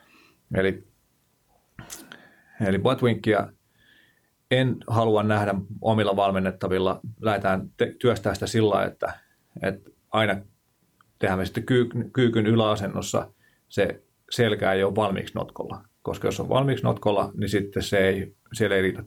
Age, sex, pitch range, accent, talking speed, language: 30-49, male, 95-110 Hz, native, 120 wpm, Finnish